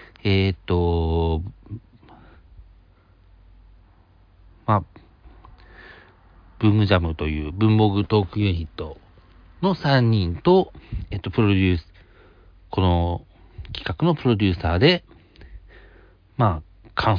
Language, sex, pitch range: Japanese, male, 85-105 Hz